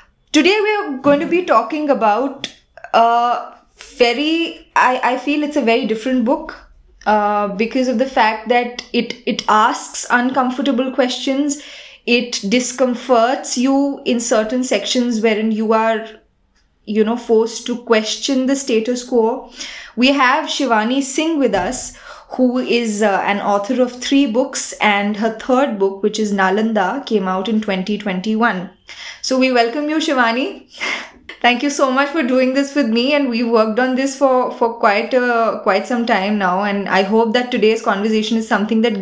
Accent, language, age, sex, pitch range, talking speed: native, Hindi, 20-39, female, 220-265 Hz, 165 wpm